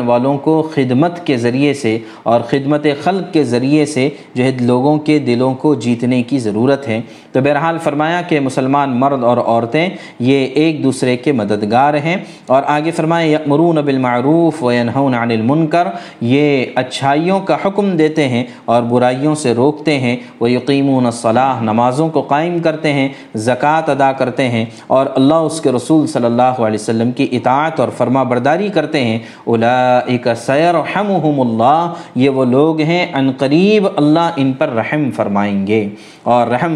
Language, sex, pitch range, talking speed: Urdu, male, 125-155 Hz, 160 wpm